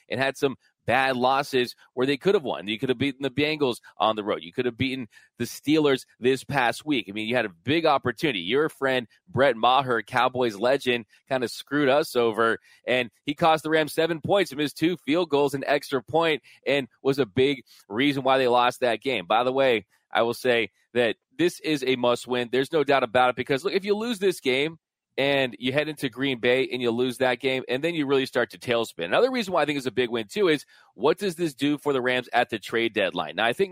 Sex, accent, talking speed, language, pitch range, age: male, American, 245 wpm, English, 120-145 Hz, 30-49